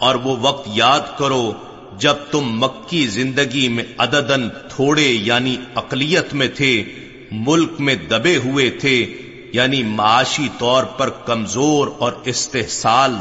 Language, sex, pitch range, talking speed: Urdu, male, 120-140 Hz, 125 wpm